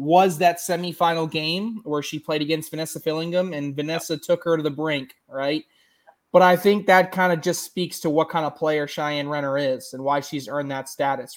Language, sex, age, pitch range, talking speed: English, male, 20-39, 140-170 Hz, 210 wpm